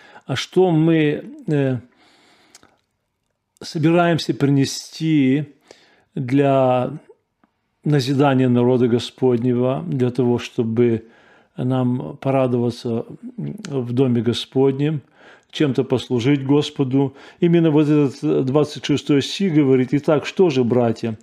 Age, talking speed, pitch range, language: 40-59, 85 wpm, 125-155 Hz, Russian